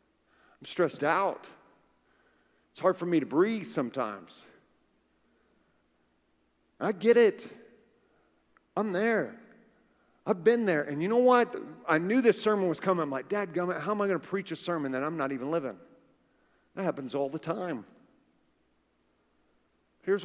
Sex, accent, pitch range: male, American, 135-185 Hz